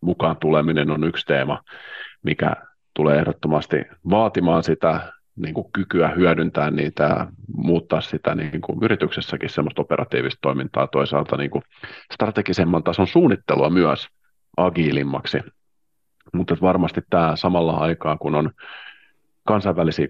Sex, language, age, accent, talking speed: male, Finnish, 40-59, native, 120 wpm